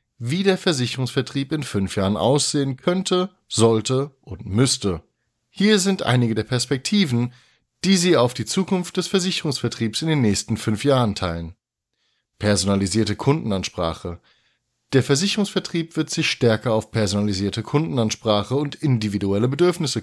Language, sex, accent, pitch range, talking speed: German, male, German, 105-140 Hz, 125 wpm